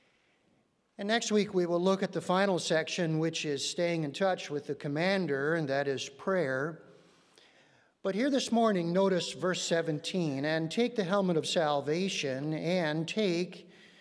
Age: 50-69